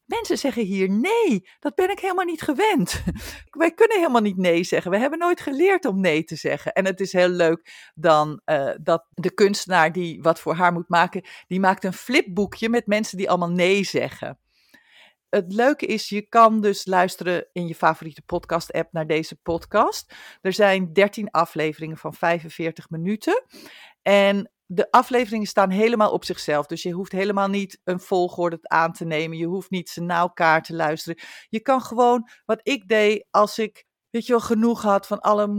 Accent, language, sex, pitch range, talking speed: Dutch, Dutch, female, 175-220 Hz, 185 wpm